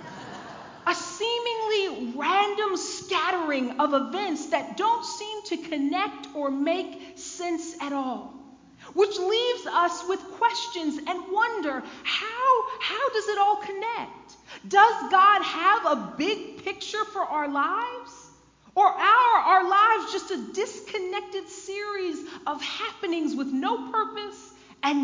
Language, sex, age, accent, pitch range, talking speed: English, female, 40-59, American, 285-405 Hz, 120 wpm